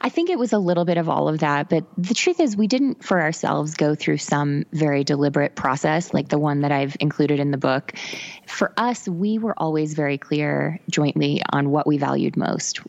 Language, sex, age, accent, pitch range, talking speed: English, female, 20-39, American, 145-170 Hz, 220 wpm